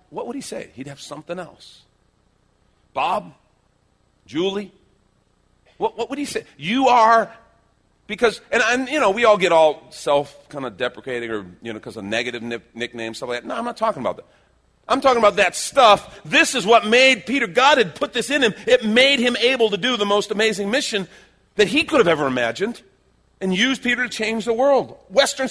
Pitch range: 155-240 Hz